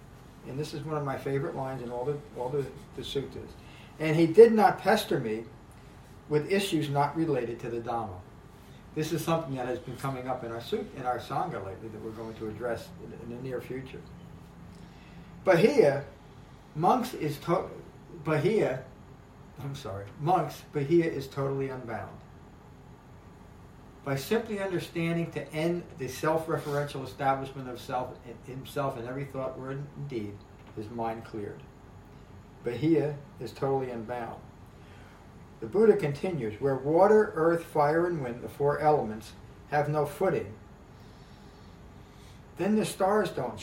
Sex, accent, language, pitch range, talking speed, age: male, American, English, 115-155 Hz, 150 wpm, 50-69